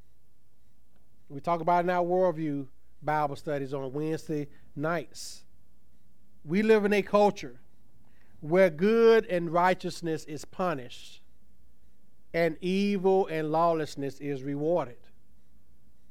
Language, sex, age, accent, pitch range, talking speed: English, male, 40-59, American, 135-175 Hz, 110 wpm